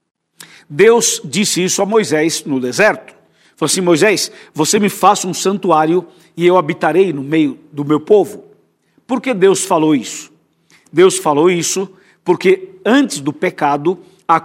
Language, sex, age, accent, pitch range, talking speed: Portuguese, male, 60-79, Brazilian, 170-210 Hz, 150 wpm